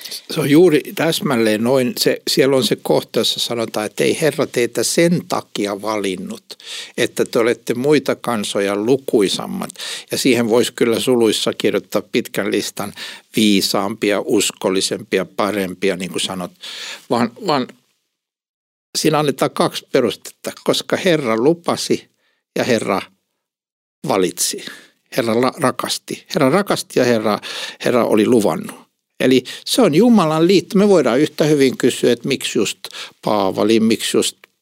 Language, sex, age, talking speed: Finnish, male, 60-79, 130 wpm